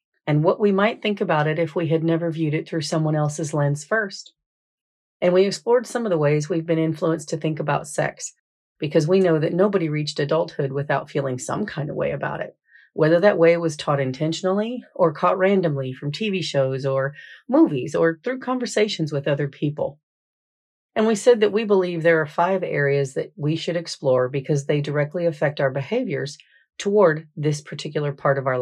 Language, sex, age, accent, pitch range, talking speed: English, female, 40-59, American, 145-185 Hz, 195 wpm